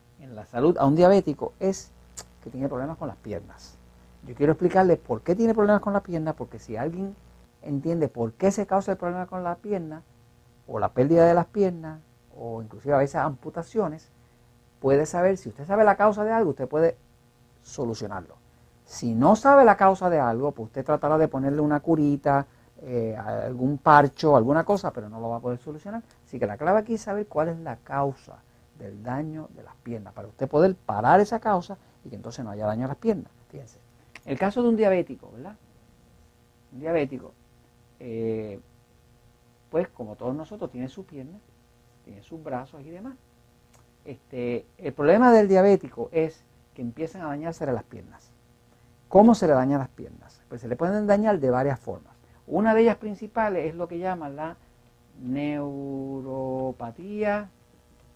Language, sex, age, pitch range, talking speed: Spanish, male, 50-69, 120-175 Hz, 180 wpm